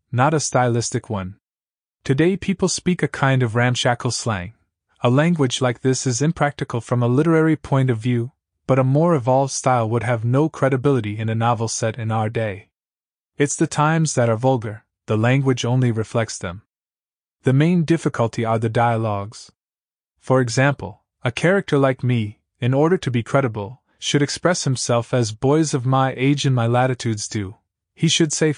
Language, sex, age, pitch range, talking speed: Italian, male, 20-39, 115-140 Hz, 175 wpm